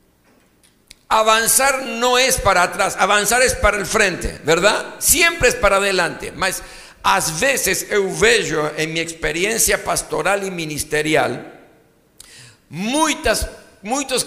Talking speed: 115 wpm